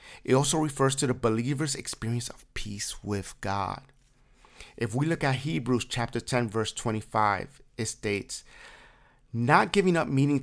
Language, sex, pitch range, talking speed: English, male, 115-140 Hz, 150 wpm